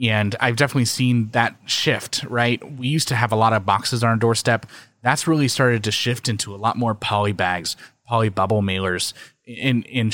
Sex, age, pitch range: male, 20-39, 110-135 Hz